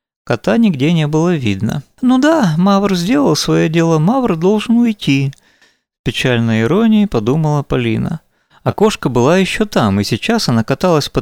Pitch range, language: 120-195 Hz, Russian